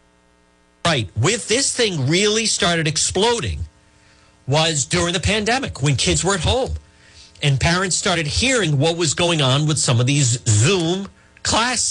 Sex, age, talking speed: male, 40-59, 150 wpm